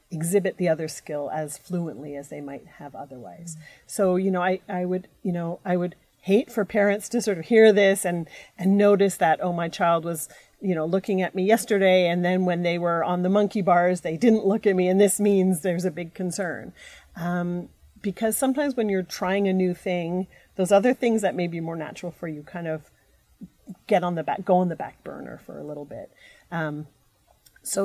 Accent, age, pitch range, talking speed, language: American, 40-59, 160-195 Hz, 215 wpm, English